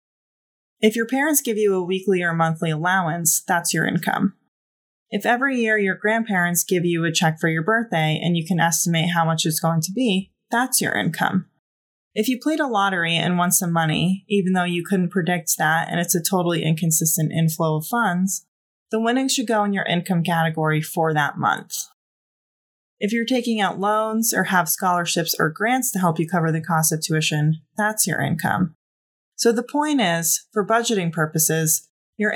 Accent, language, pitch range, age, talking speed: American, English, 165-215 Hz, 20-39, 185 wpm